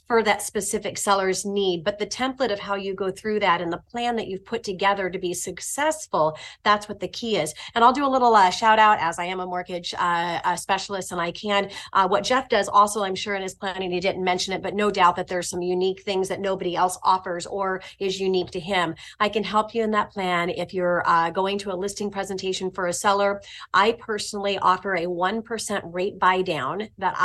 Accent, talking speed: American, 230 wpm